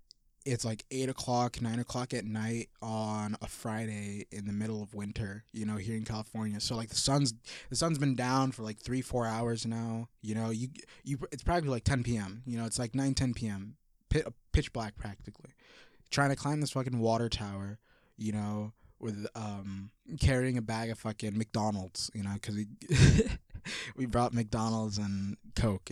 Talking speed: 185 wpm